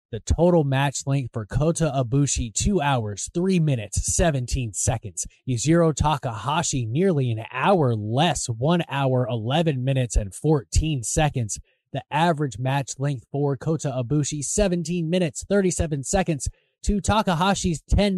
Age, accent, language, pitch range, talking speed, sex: 20-39, American, English, 130-170 Hz, 130 wpm, male